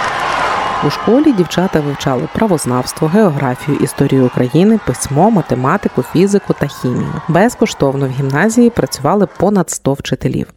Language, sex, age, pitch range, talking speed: Ukrainian, female, 30-49, 140-185 Hz, 115 wpm